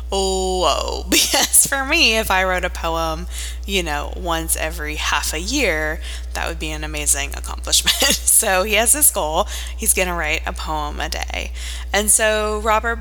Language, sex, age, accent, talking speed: English, female, 20-39, American, 175 wpm